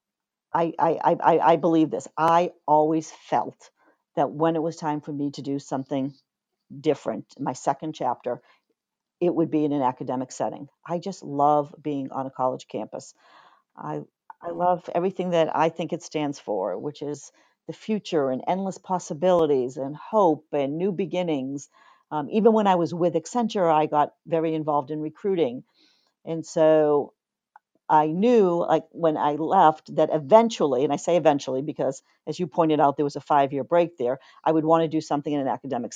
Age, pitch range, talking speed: 50-69, 145-170 Hz, 180 wpm